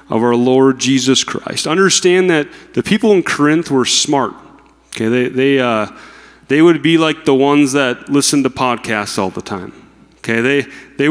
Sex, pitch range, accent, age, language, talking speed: male, 125-160 Hz, American, 30-49, English, 180 wpm